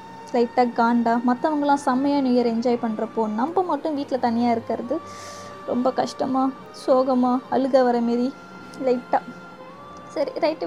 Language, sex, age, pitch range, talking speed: Tamil, female, 20-39, 225-255 Hz, 120 wpm